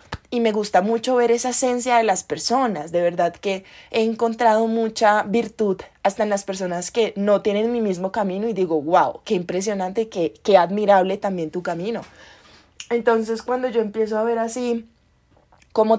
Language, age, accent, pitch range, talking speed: Spanish, 20-39, Colombian, 185-230 Hz, 175 wpm